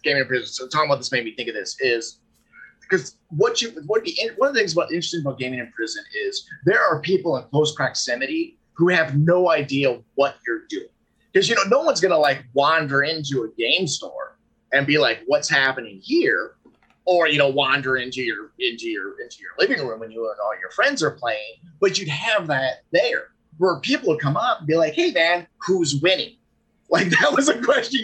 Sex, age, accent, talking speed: male, 30-49, American, 220 wpm